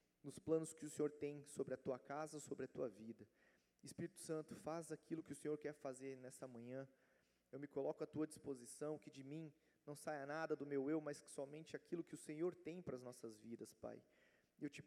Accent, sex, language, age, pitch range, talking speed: Brazilian, male, Portuguese, 30-49, 130-155 Hz, 220 wpm